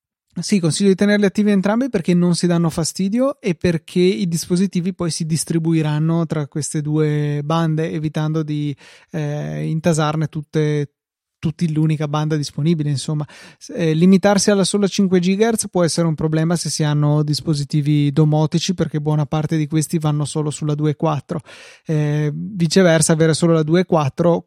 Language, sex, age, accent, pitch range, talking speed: Italian, male, 30-49, native, 150-175 Hz, 150 wpm